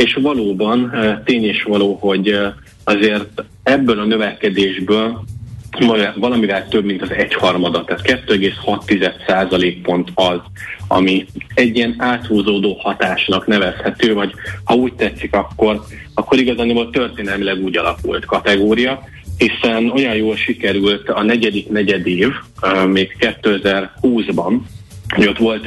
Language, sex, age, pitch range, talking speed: Hungarian, male, 30-49, 95-110 Hz, 110 wpm